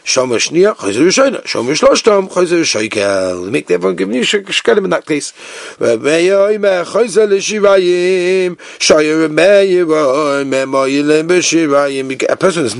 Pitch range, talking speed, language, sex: 135-190 Hz, 45 wpm, English, male